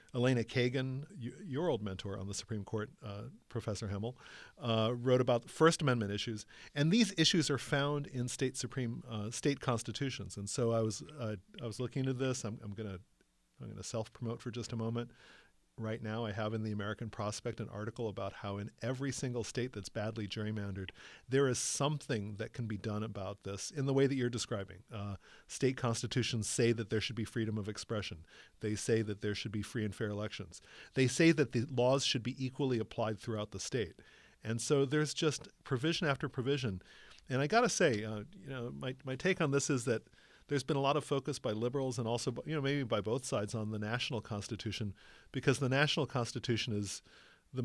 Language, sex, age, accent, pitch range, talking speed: English, male, 40-59, American, 105-130 Hz, 210 wpm